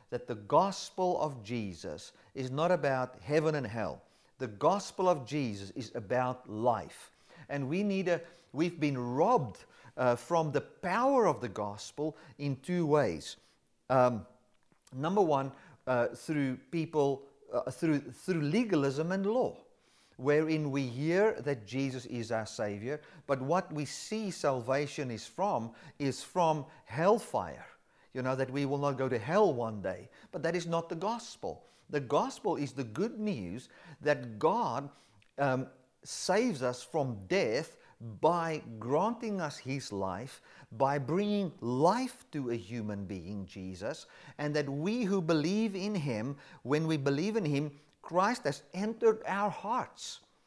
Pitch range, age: 130-185 Hz, 50-69